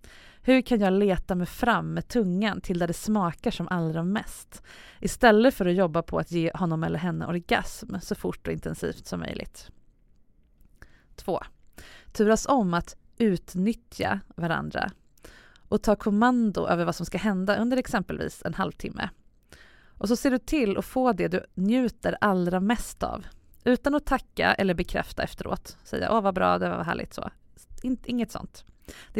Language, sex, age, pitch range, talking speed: English, female, 20-39, 180-235 Hz, 160 wpm